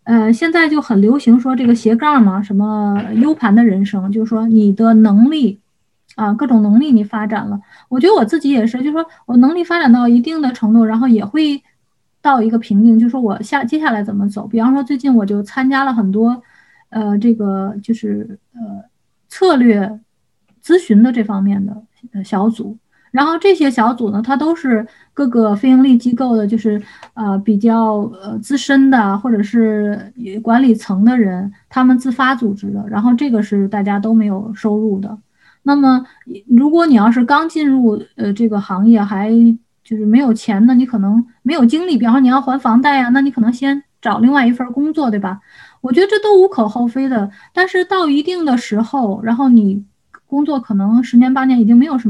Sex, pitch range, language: female, 215-270 Hz, Chinese